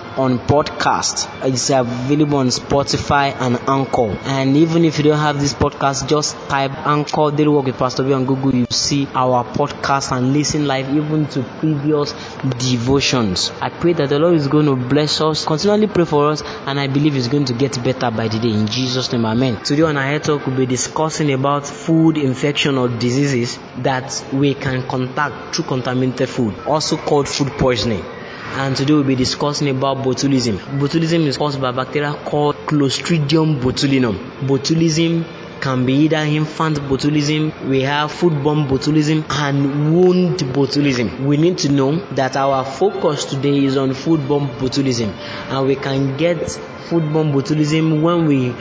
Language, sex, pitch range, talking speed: English, male, 130-150 Hz, 170 wpm